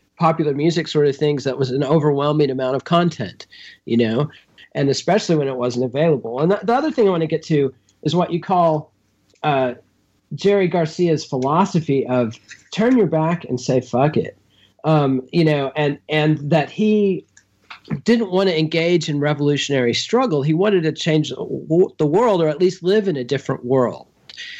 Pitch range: 130-170 Hz